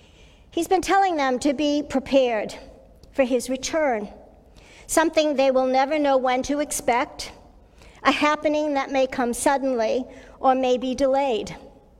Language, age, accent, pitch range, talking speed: English, 50-69, American, 245-290 Hz, 140 wpm